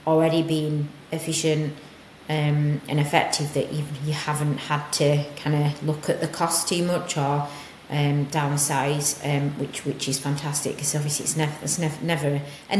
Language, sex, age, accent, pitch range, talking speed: English, female, 30-49, British, 150-180 Hz, 170 wpm